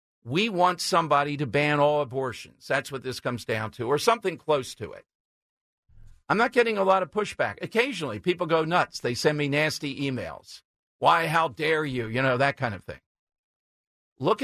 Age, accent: 50-69, American